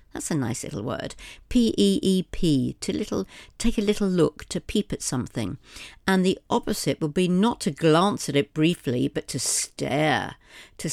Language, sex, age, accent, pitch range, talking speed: English, female, 50-69, British, 150-205 Hz, 170 wpm